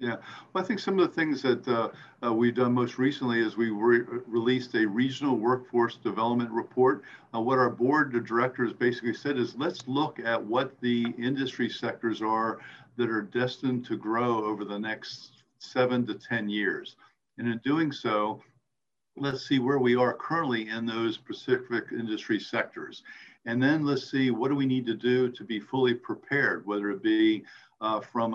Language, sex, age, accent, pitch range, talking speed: English, male, 50-69, American, 110-125 Hz, 180 wpm